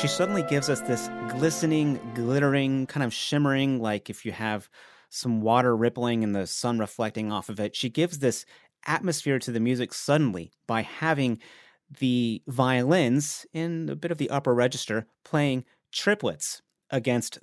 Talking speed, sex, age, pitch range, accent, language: 160 wpm, male, 30-49, 110-140 Hz, American, English